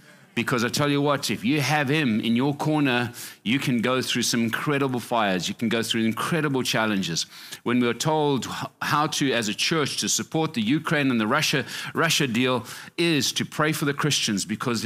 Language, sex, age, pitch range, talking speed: English, male, 40-59, 110-140 Hz, 200 wpm